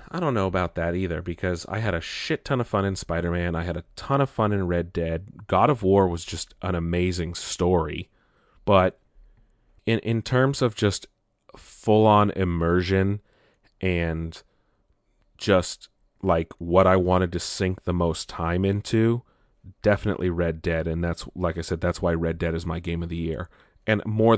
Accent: American